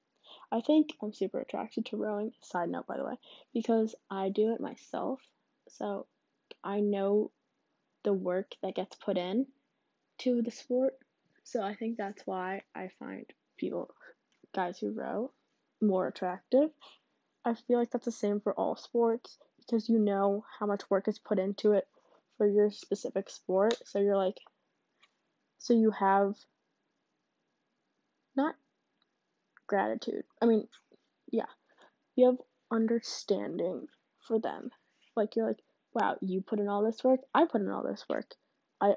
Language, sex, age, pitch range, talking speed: English, female, 10-29, 205-255 Hz, 150 wpm